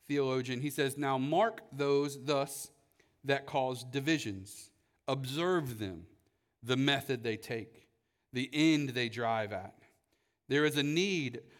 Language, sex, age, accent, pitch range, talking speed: English, male, 40-59, American, 120-150 Hz, 130 wpm